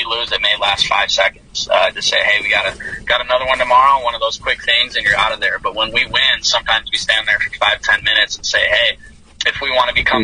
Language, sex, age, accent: English, male, 20-39, American